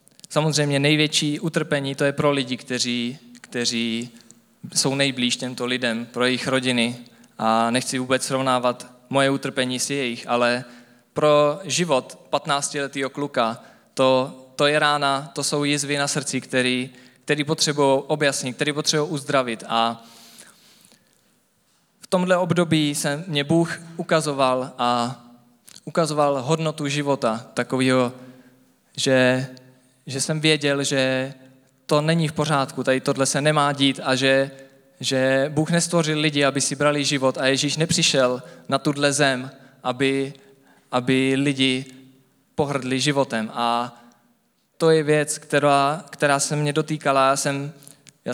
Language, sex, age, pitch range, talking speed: Czech, male, 20-39, 130-150 Hz, 130 wpm